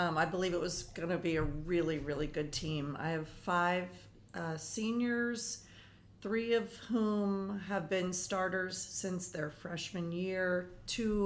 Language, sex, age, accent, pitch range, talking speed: English, female, 40-59, American, 170-200 Hz, 155 wpm